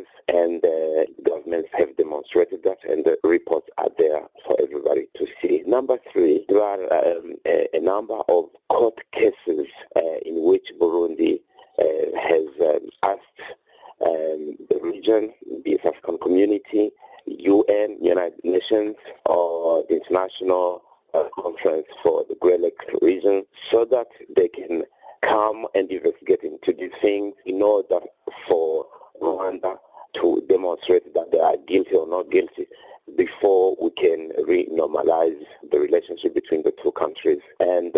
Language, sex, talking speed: English, male, 135 wpm